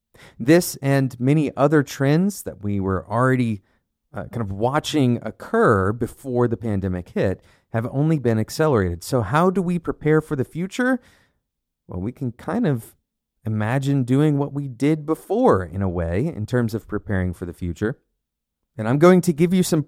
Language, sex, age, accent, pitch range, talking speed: English, male, 30-49, American, 100-155 Hz, 175 wpm